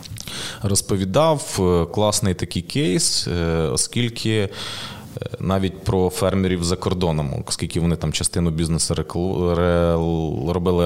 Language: Ukrainian